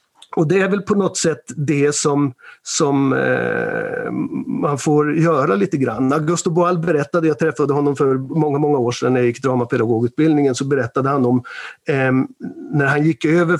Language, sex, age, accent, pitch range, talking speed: Swedish, male, 50-69, native, 145-180 Hz, 175 wpm